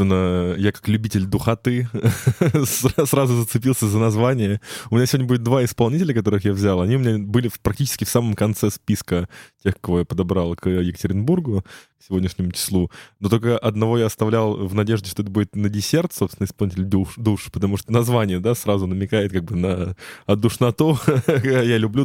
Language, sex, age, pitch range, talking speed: Russian, male, 20-39, 100-125 Hz, 170 wpm